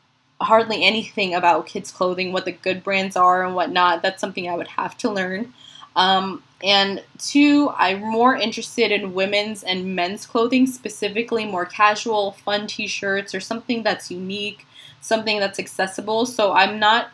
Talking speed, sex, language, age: 160 wpm, female, English, 20-39